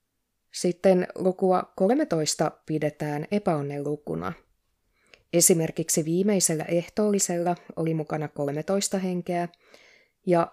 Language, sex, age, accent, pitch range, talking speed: Finnish, female, 20-39, native, 155-185 Hz, 75 wpm